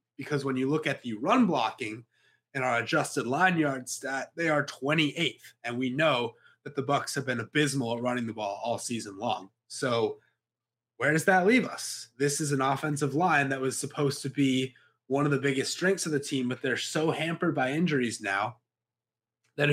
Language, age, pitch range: English, 20-39, 125-150 Hz